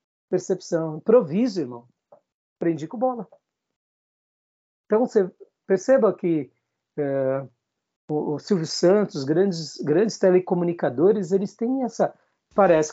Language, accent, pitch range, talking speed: Portuguese, Brazilian, 150-210 Hz, 100 wpm